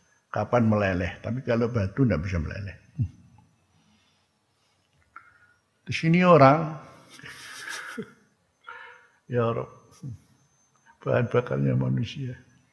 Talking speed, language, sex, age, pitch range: 75 wpm, Indonesian, male, 60-79, 105-125 Hz